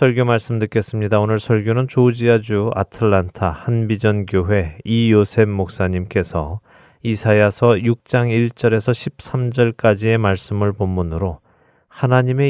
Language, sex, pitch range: Korean, male, 95-120 Hz